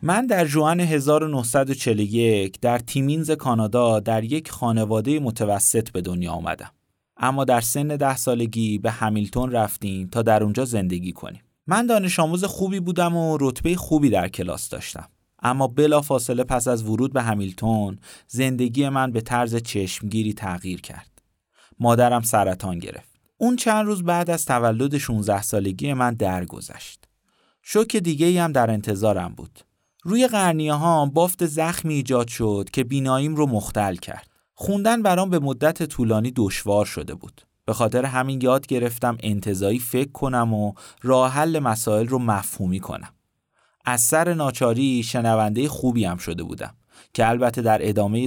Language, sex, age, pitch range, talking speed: Persian, male, 30-49, 105-145 Hz, 145 wpm